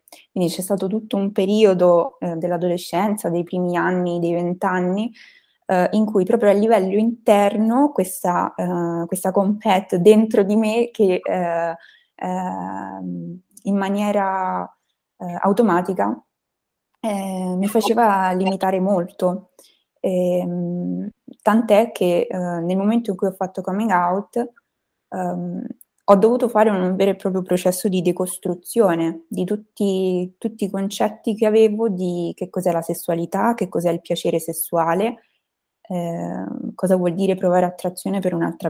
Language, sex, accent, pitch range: Italian, female, native, 175-210 Hz